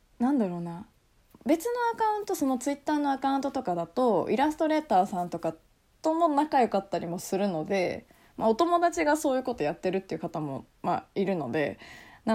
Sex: female